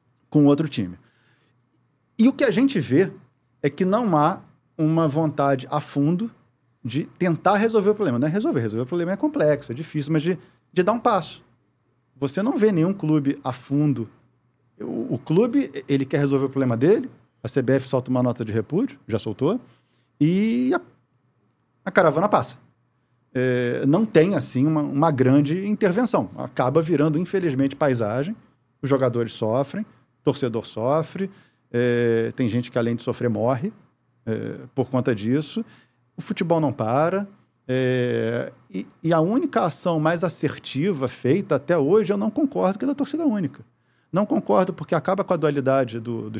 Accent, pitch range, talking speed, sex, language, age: Brazilian, 125-165 Hz, 160 wpm, male, Portuguese, 40-59